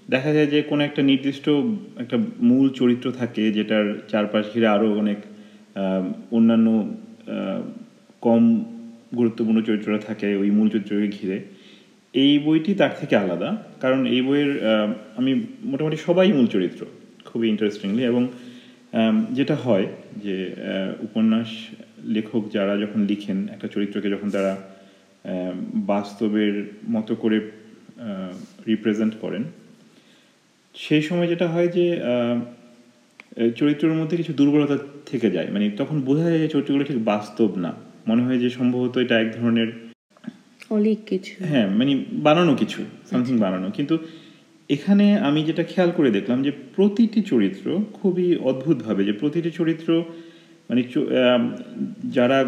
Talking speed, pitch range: 115 wpm, 110-170 Hz